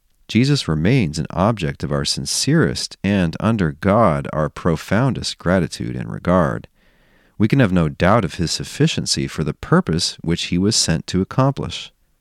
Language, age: English, 40-59